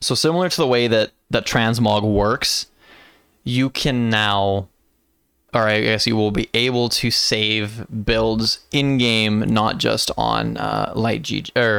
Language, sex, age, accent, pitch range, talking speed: English, male, 20-39, American, 110-125 Hz, 160 wpm